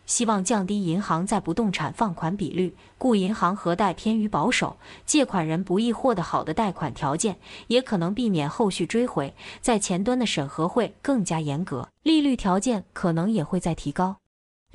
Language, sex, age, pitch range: Chinese, female, 20-39, 175-230 Hz